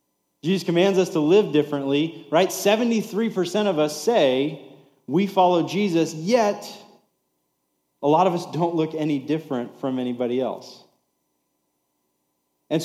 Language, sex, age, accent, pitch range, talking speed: English, male, 30-49, American, 145-185 Hz, 125 wpm